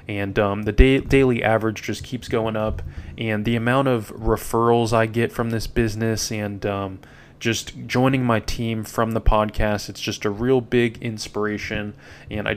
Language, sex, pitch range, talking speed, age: English, male, 105-120 Hz, 170 wpm, 20-39